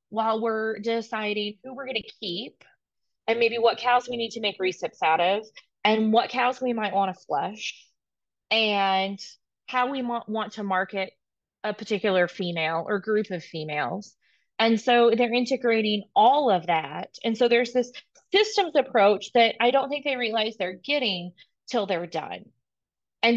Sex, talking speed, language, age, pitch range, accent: female, 165 wpm, English, 20-39, 195-245 Hz, American